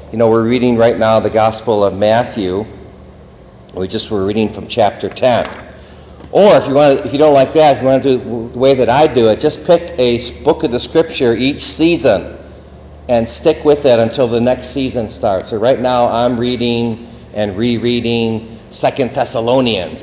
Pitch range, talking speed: 110-130 Hz, 200 wpm